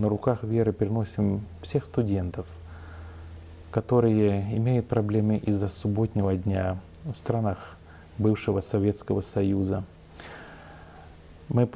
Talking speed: 90 wpm